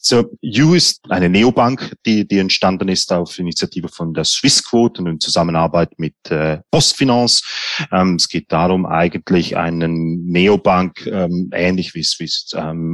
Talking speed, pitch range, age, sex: 150 wpm, 85-110 Hz, 30-49, male